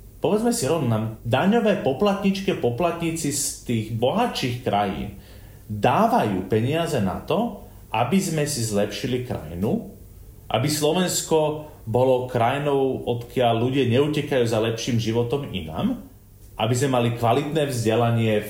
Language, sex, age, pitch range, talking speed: Slovak, male, 30-49, 110-145 Hz, 115 wpm